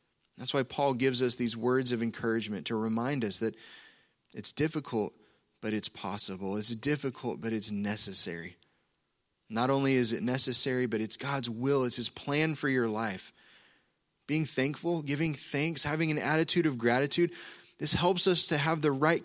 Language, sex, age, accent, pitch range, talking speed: English, male, 20-39, American, 125-160 Hz, 170 wpm